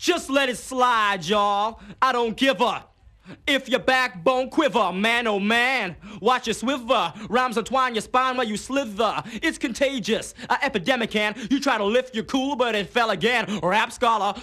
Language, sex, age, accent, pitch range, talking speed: English, male, 30-49, American, 210-255 Hz, 180 wpm